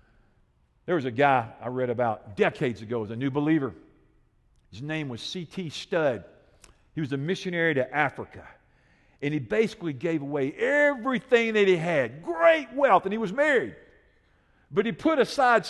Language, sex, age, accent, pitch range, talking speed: English, male, 50-69, American, 140-205 Hz, 165 wpm